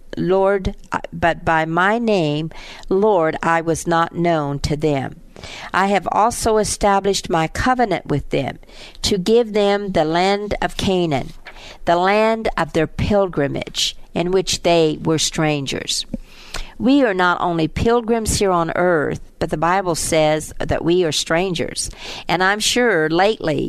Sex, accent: female, American